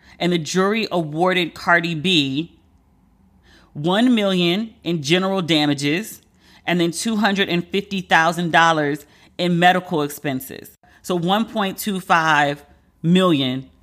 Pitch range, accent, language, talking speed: 150-175 Hz, American, English, 85 wpm